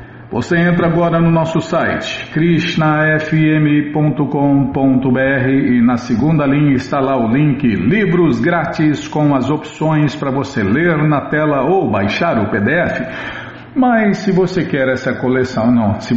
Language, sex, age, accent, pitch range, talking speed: Portuguese, male, 50-69, Brazilian, 125-150 Hz, 135 wpm